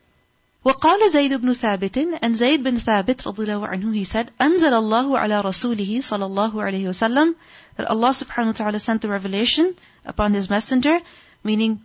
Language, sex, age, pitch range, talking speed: English, female, 30-49, 215-270 Hz, 165 wpm